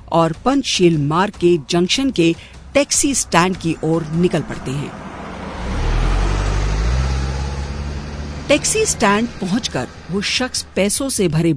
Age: 50-69